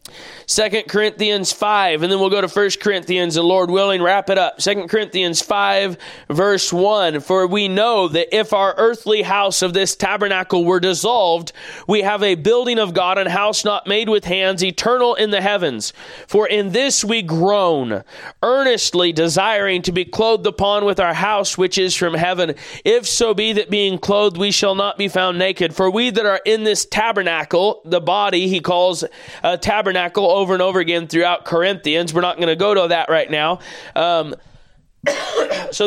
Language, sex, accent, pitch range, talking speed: English, male, American, 180-210 Hz, 185 wpm